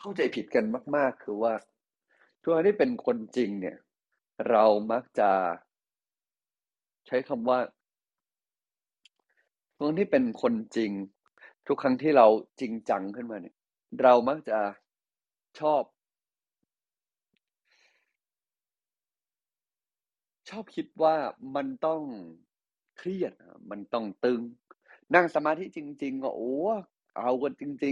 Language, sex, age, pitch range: Thai, male, 30-49, 115-155 Hz